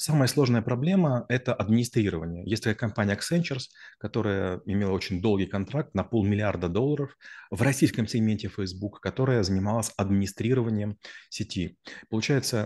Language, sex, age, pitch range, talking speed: Russian, male, 30-49, 95-120 Hz, 125 wpm